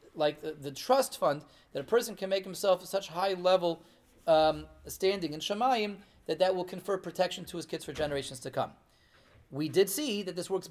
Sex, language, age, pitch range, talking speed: male, English, 30-49, 160-205 Hz, 195 wpm